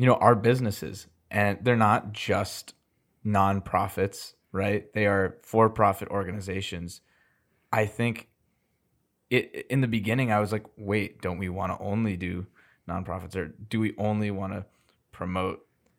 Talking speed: 145 wpm